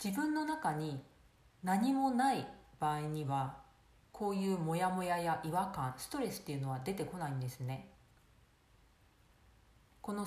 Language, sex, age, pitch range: Japanese, female, 40-59, 145-210 Hz